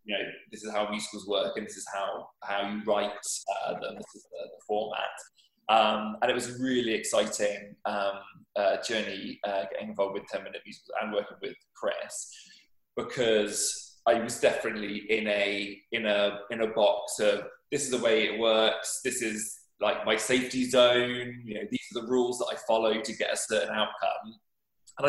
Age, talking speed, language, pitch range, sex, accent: 20-39, 190 wpm, English, 105-125 Hz, male, British